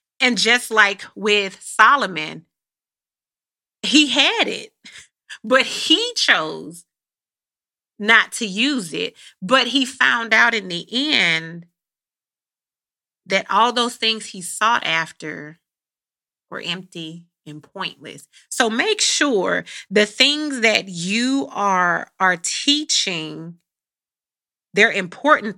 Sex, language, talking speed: female, English, 105 wpm